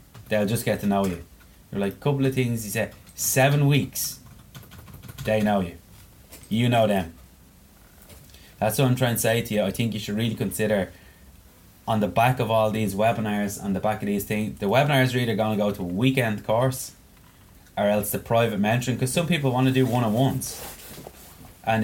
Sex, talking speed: male, 200 wpm